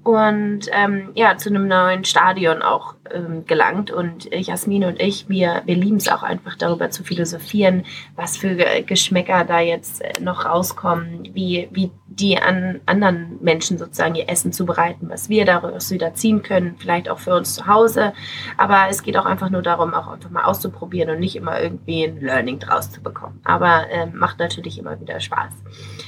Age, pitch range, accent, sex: 20-39, 160-195 Hz, German, female